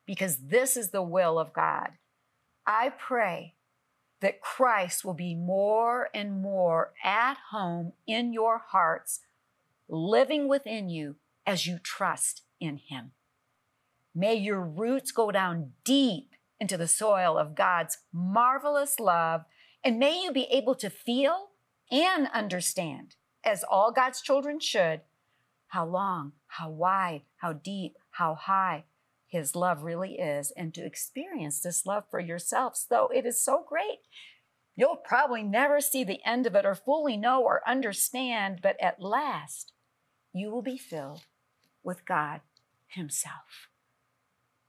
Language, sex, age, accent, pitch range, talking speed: English, female, 50-69, American, 170-235 Hz, 140 wpm